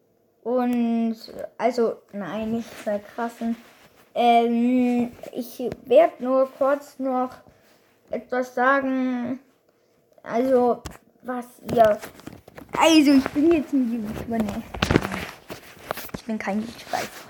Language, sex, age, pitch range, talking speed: German, female, 20-39, 240-285 Hz, 105 wpm